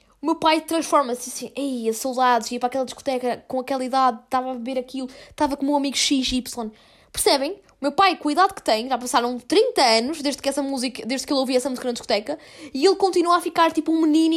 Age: 20-39